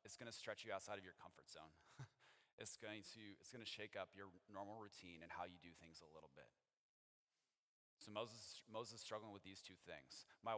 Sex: male